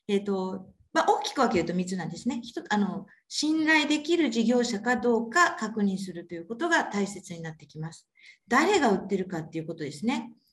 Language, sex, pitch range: Japanese, female, 195-290 Hz